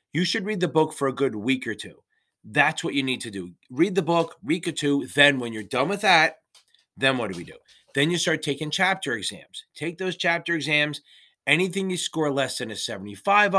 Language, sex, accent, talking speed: English, male, American, 225 wpm